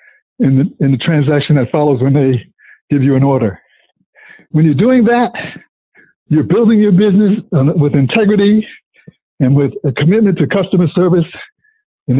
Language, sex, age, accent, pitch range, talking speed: English, male, 60-79, American, 145-185 Hz, 150 wpm